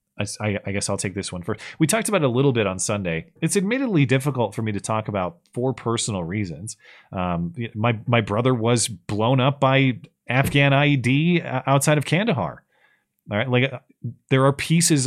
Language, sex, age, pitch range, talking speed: English, male, 30-49, 105-135 Hz, 185 wpm